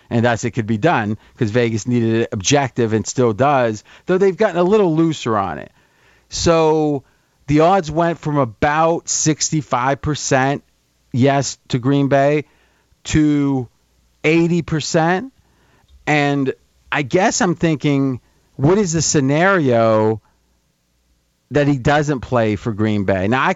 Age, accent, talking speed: 40-59, American, 135 wpm